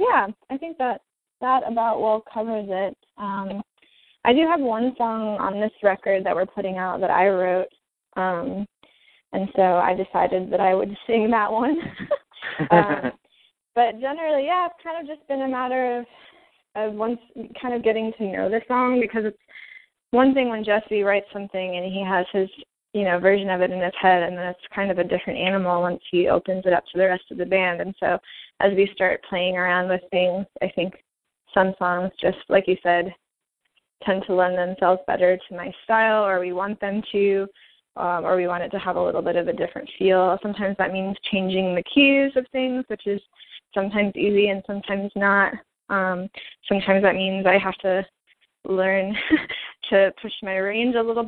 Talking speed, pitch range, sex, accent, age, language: 200 wpm, 185-225 Hz, female, American, 20-39, English